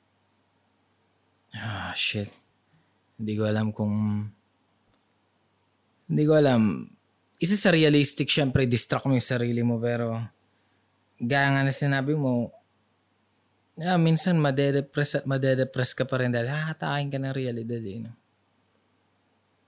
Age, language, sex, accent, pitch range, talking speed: 20-39, Filipino, male, native, 110-135 Hz, 120 wpm